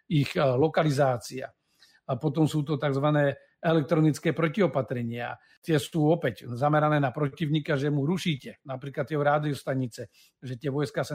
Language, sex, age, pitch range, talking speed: Slovak, male, 50-69, 140-160 Hz, 135 wpm